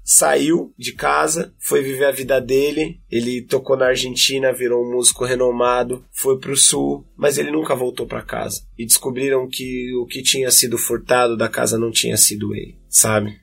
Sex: male